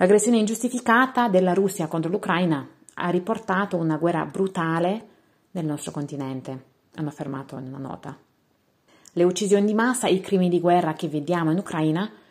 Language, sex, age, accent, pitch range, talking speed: Italian, female, 30-49, native, 150-190 Hz, 155 wpm